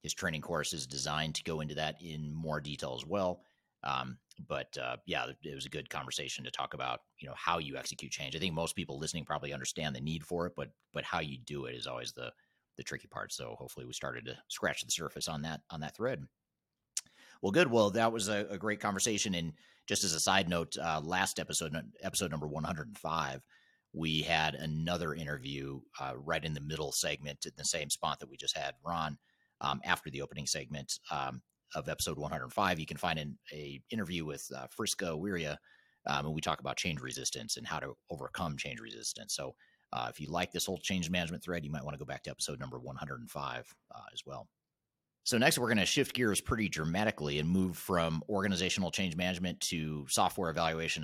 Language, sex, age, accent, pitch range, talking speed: English, male, 30-49, American, 75-90 Hz, 210 wpm